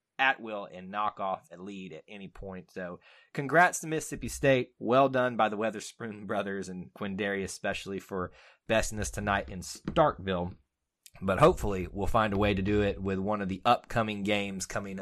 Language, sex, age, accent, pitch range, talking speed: English, male, 30-49, American, 95-125 Hz, 185 wpm